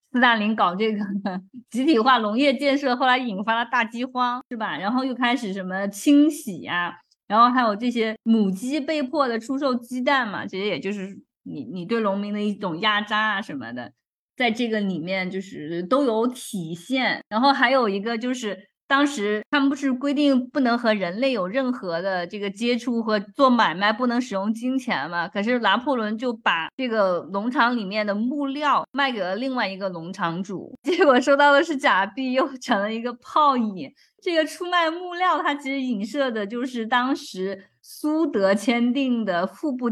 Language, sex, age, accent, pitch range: Chinese, female, 20-39, native, 205-270 Hz